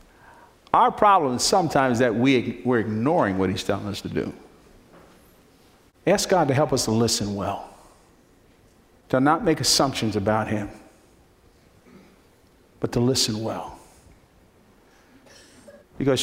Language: English